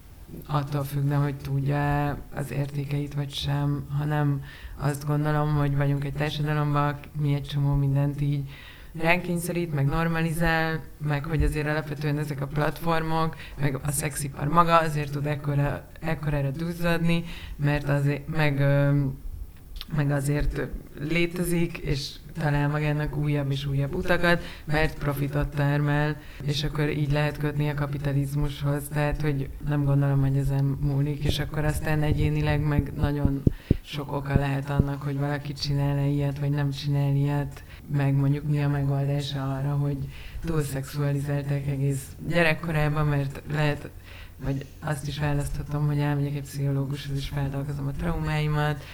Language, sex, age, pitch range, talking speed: Hungarian, female, 30-49, 140-150 Hz, 135 wpm